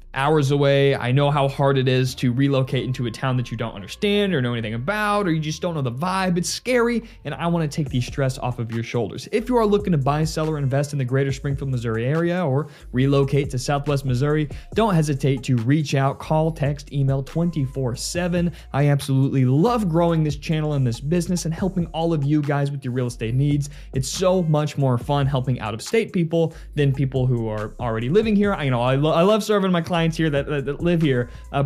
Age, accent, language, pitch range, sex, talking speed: 20-39, American, English, 125-165 Hz, male, 230 wpm